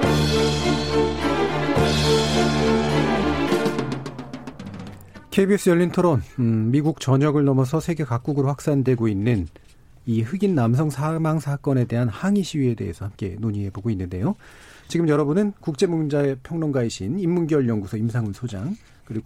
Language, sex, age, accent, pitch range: Korean, male, 40-59, native, 100-150 Hz